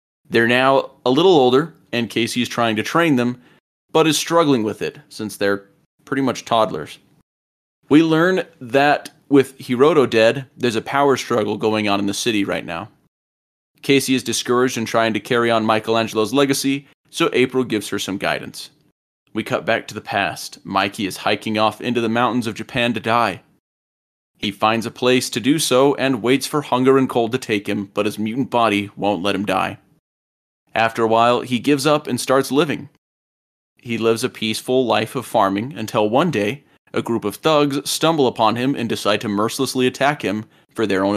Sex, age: male, 30-49